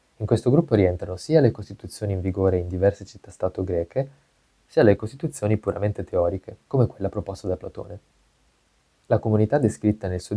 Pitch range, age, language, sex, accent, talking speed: 90-110 Hz, 20-39, Italian, male, native, 160 wpm